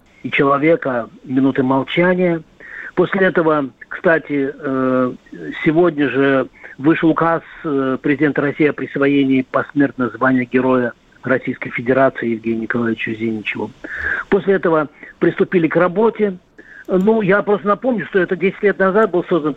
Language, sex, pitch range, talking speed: Russian, male, 145-180 Hz, 115 wpm